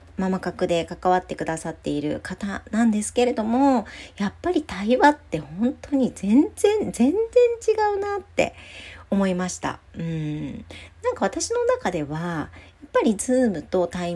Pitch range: 160-245 Hz